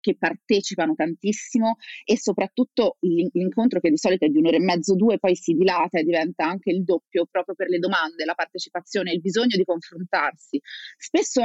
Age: 30-49